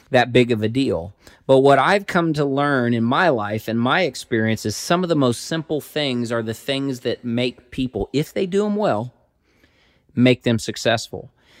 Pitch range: 110-140 Hz